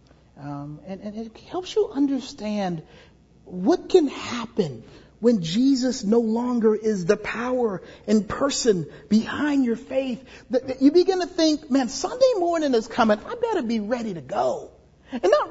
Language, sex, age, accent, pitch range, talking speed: English, male, 40-59, American, 240-370 Hz, 155 wpm